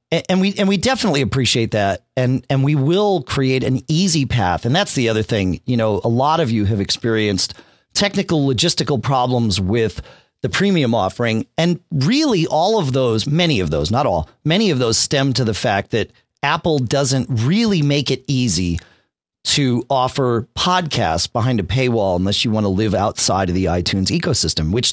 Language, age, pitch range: English, 40-59, 100-165 Hz